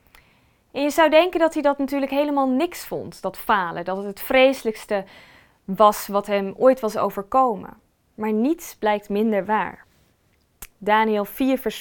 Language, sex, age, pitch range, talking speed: Dutch, female, 20-39, 210-260 Hz, 160 wpm